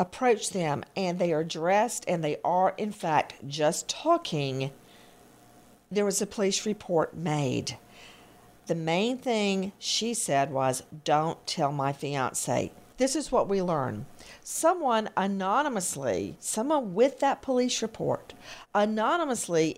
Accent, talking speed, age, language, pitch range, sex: American, 125 wpm, 50-69, English, 170-245 Hz, female